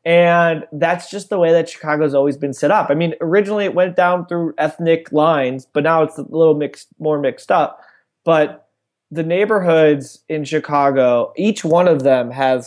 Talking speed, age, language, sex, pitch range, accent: 185 wpm, 20-39, English, male, 145-195 Hz, American